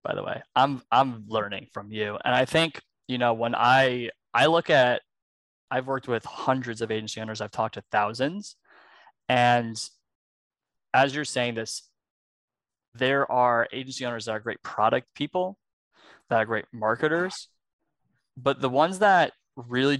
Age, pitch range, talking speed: 20-39, 110-130 Hz, 155 wpm